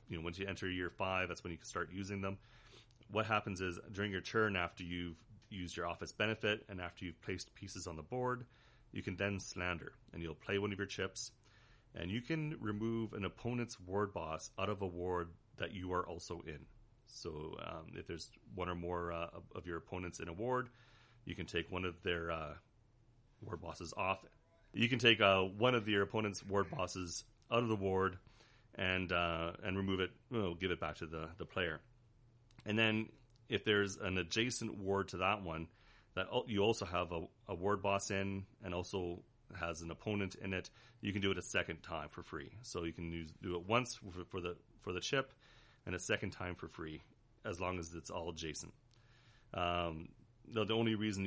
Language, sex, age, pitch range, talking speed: English, male, 30-49, 85-110 Hz, 210 wpm